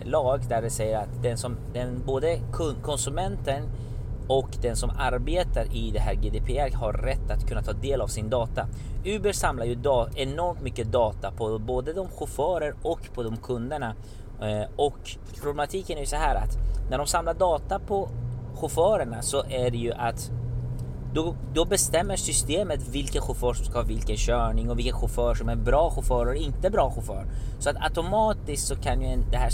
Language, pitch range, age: Swedish, 110-135 Hz, 30-49